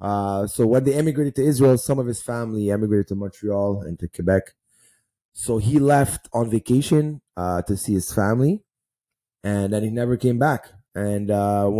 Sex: male